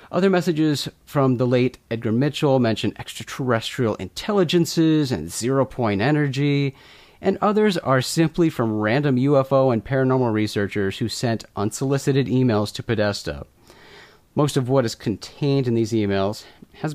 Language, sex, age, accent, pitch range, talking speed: English, male, 30-49, American, 105-140 Hz, 135 wpm